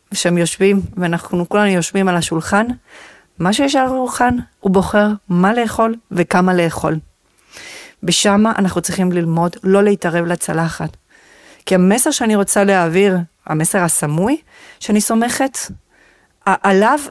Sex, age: female, 40-59